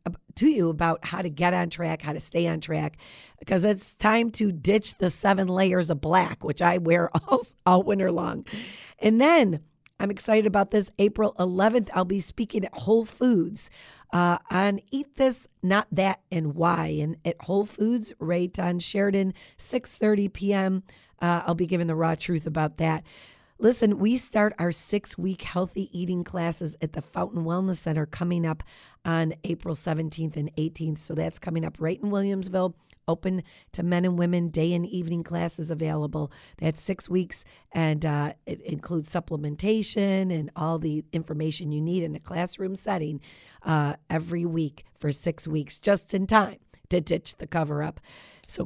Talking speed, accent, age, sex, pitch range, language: 170 wpm, American, 40-59, female, 160-200 Hz, English